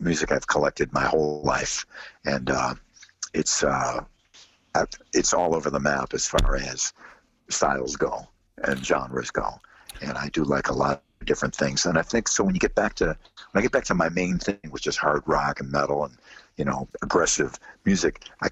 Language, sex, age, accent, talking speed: English, male, 60-79, American, 200 wpm